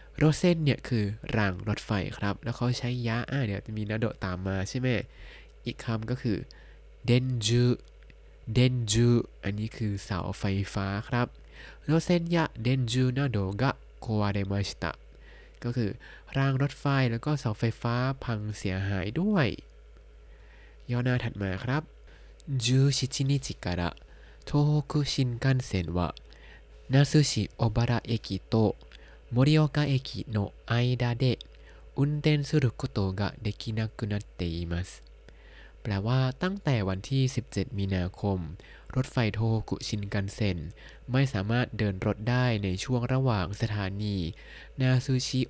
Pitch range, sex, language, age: 100-130 Hz, male, Thai, 20-39